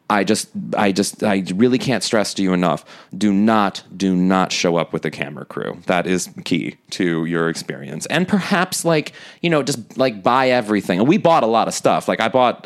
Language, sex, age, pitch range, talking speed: English, male, 30-49, 100-160 Hz, 220 wpm